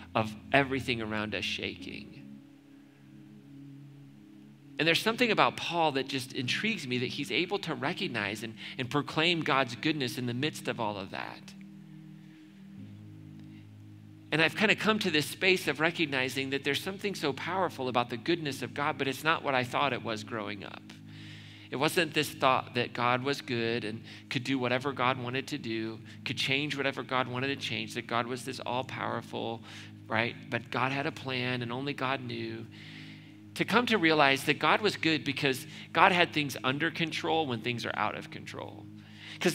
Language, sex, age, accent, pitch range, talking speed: English, male, 40-59, American, 120-155 Hz, 180 wpm